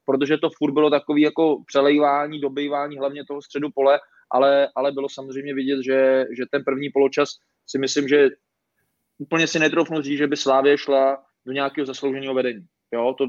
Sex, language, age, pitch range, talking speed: male, Czech, 20-39, 135-150 Hz, 175 wpm